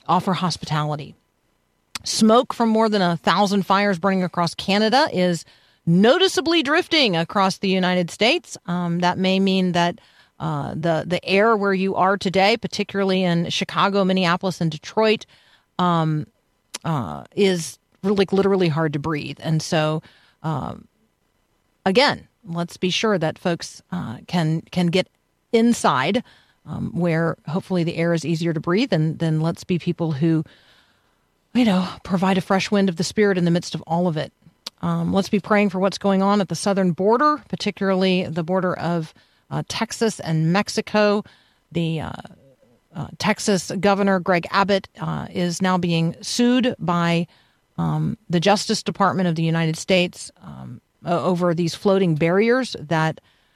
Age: 40-59